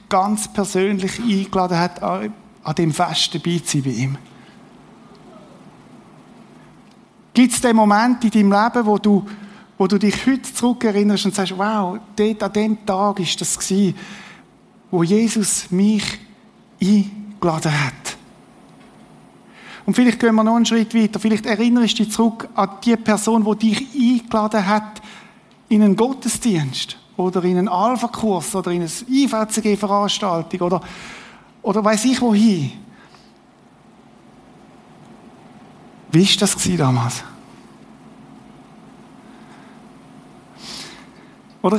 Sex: male